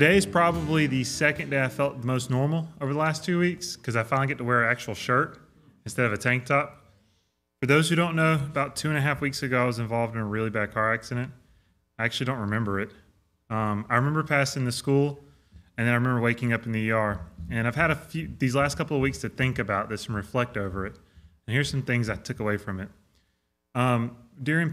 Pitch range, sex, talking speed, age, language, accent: 105-140 Hz, male, 245 wpm, 20-39, English, American